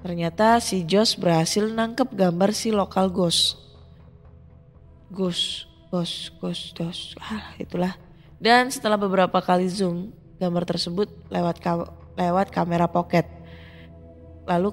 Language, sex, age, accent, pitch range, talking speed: Indonesian, female, 20-39, native, 170-220 Hz, 110 wpm